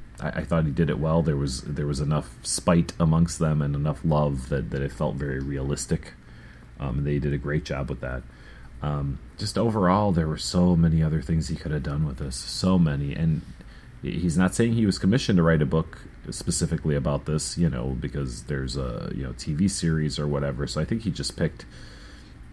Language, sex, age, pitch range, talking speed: English, male, 30-49, 70-80 Hz, 210 wpm